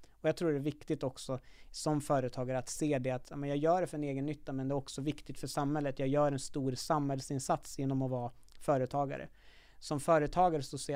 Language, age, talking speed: Swedish, 30-49, 215 wpm